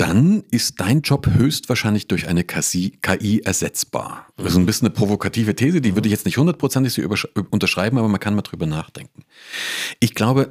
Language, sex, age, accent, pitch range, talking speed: German, male, 40-59, German, 95-130 Hz, 175 wpm